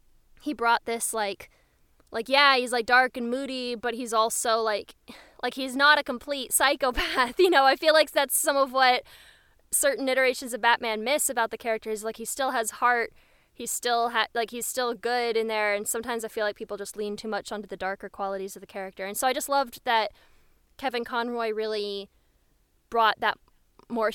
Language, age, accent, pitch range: English, 10-29, American, 215-265 Hz